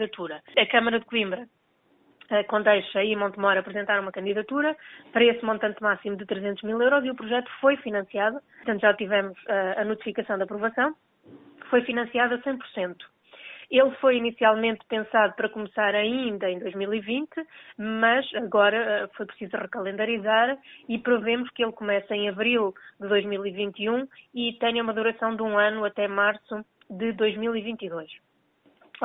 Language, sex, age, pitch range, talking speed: Portuguese, female, 20-39, 205-245 Hz, 145 wpm